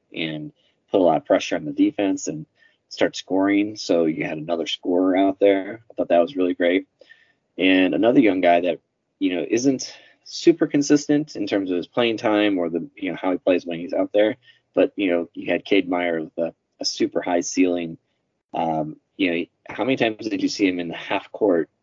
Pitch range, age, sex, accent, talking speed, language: 85-105 Hz, 20-39, male, American, 215 wpm, English